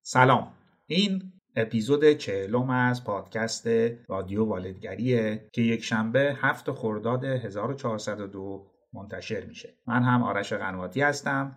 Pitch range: 105-135 Hz